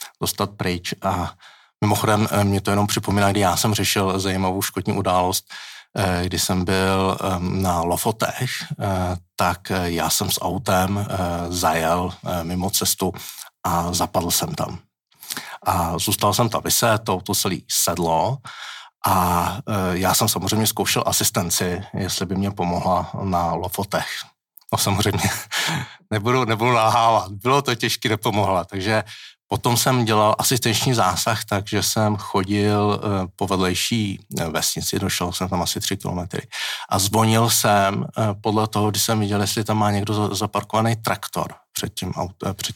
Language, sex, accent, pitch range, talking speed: Czech, male, native, 95-110 Hz, 135 wpm